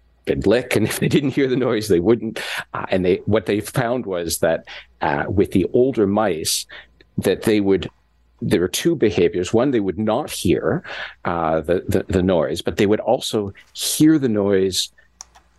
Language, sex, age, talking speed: English, male, 50-69, 185 wpm